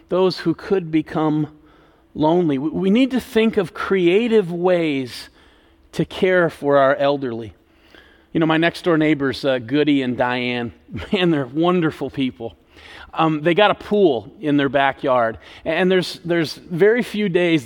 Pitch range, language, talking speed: 130-165 Hz, English, 150 wpm